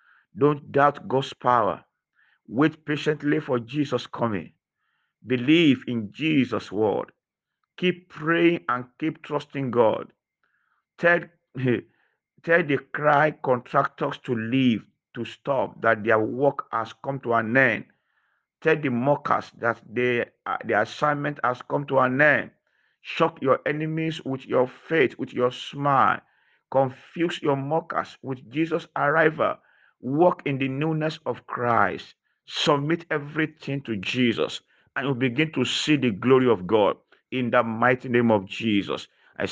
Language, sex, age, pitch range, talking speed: English, male, 50-69, 125-155 Hz, 135 wpm